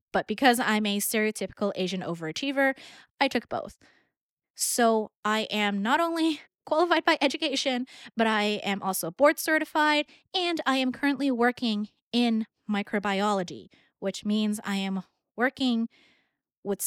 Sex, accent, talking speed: female, American, 130 wpm